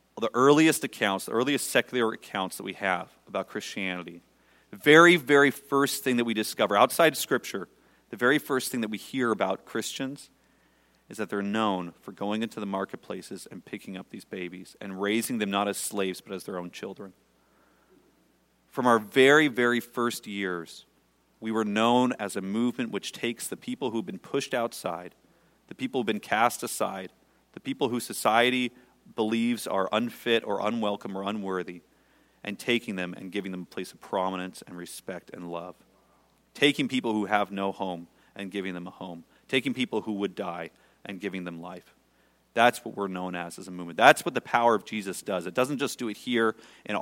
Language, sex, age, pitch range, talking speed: English, male, 40-59, 90-115 Hz, 190 wpm